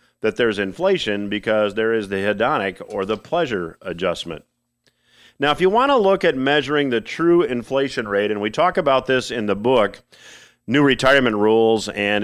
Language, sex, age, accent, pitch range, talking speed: English, male, 40-59, American, 105-130 Hz, 170 wpm